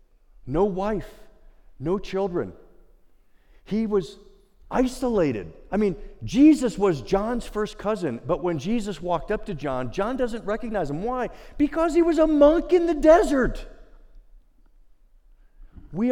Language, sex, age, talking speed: English, male, 50-69, 130 wpm